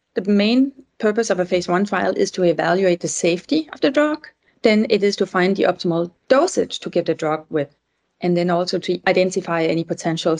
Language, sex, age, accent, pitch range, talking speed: English, female, 30-49, Danish, 175-225 Hz, 210 wpm